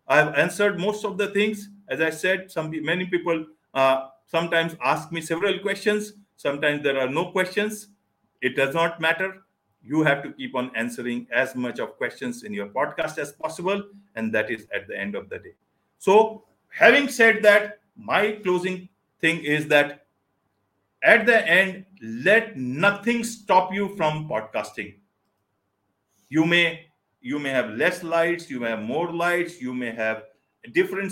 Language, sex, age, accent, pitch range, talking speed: English, male, 50-69, Indian, 125-200 Hz, 170 wpm